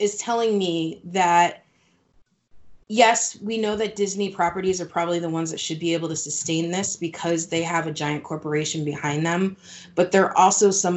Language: English